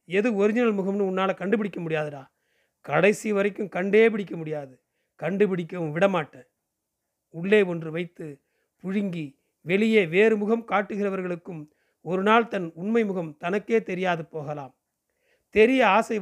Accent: native